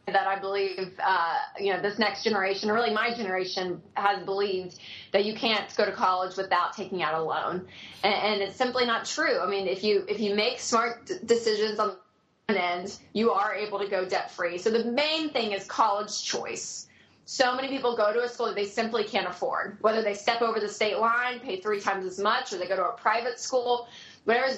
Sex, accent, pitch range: female, American, 200-245 Hz